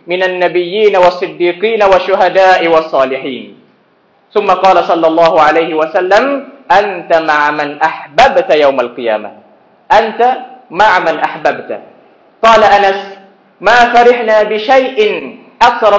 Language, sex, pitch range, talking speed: Arabic, male, 170-220 Hz, 100 wpm